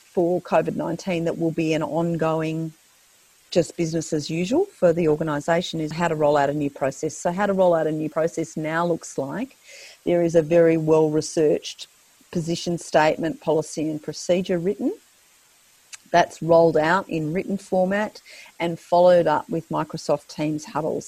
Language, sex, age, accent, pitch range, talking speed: English, female, 40-59, Australian, 155-180 Hz, 160 wpm